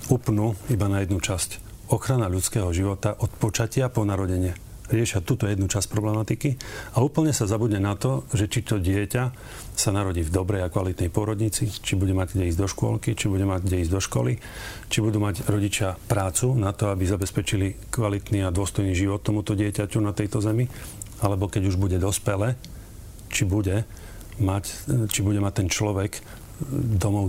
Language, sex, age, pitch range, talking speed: Slovak, male, 40-59, 95-110 Hz, 175 wpm